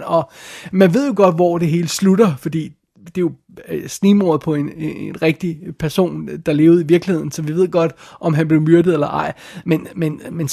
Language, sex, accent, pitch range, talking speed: Danish, male, native, 155-185 Hz, 205 wpm